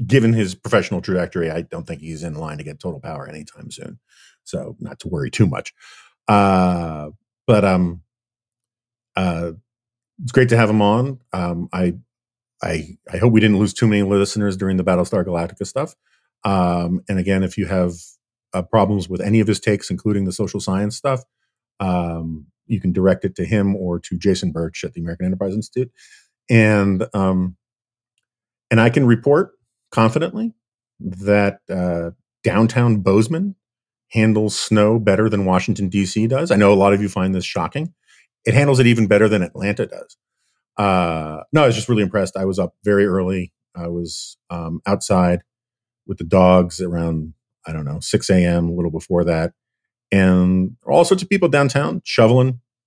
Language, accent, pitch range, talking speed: English, American, 90-120 Hz, 175 wpm